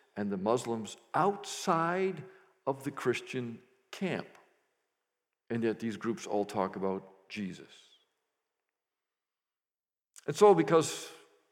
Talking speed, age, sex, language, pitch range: 100 wpm, 50-69, male, English, 110-180 Hz